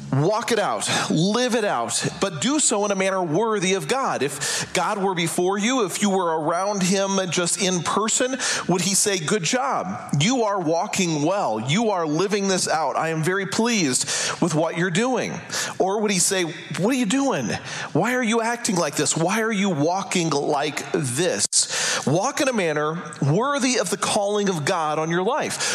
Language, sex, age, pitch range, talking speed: English, male, 40-59, 170-225 Hz, 195 wpm